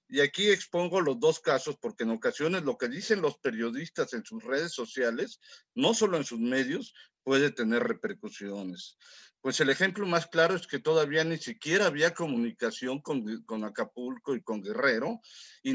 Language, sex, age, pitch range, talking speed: Spanish, male, 50-69, 130-185 Hz, 170 wpm